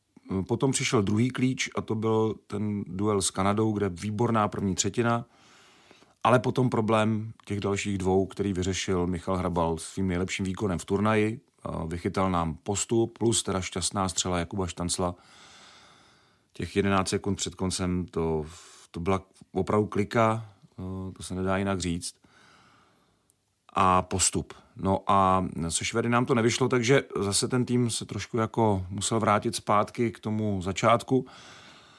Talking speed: 145 wpm